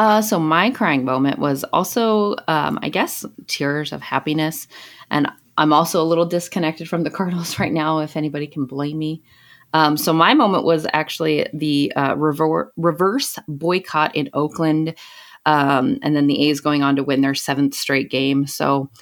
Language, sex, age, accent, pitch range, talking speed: English, female, 30-49, American, 140-165 Hz, 175 wpm